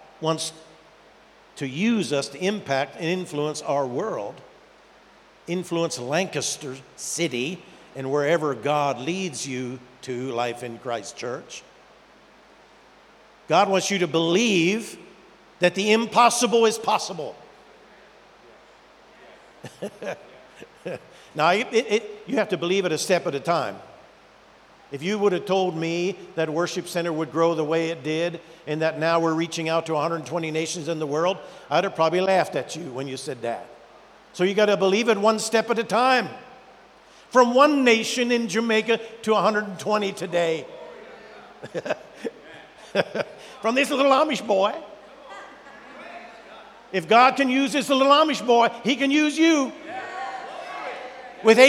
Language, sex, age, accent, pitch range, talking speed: English, male, 50-69, American, 160-235 Hz, 140 wpm